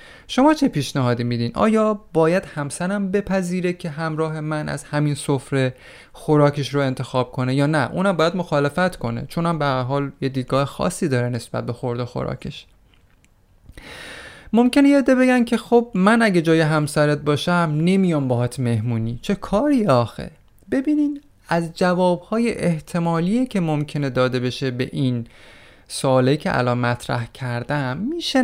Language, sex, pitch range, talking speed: Persian, male, 130-195 Hz, 140 wpm